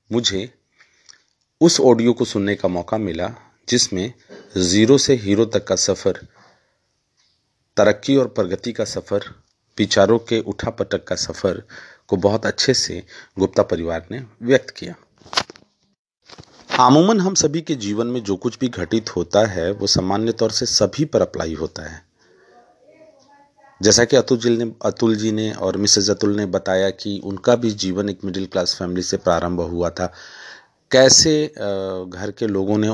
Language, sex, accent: Hindi, male, native